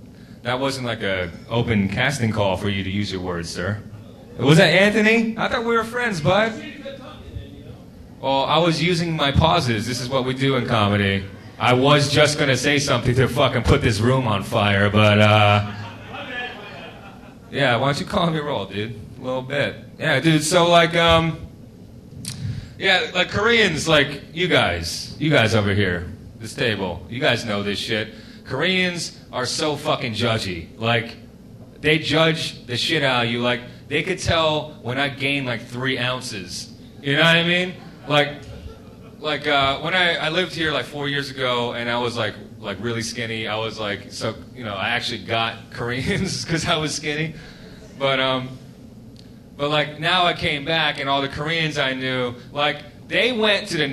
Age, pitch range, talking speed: 30-49, 115-155 Hz, 185 wpm